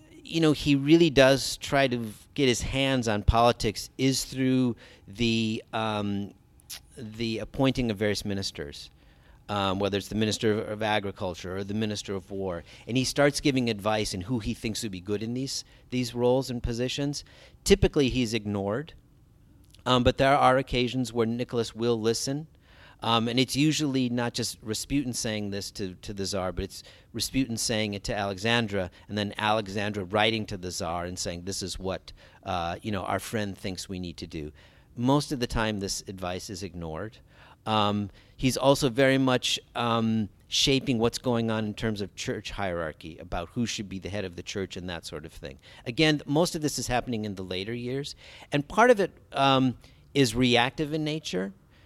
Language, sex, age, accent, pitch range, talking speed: English, male, 40-59, American, 100-130 Hz, 185 wpm